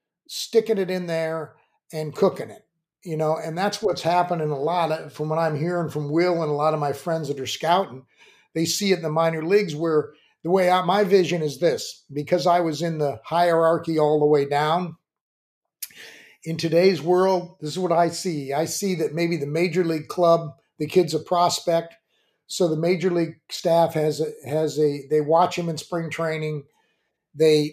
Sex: male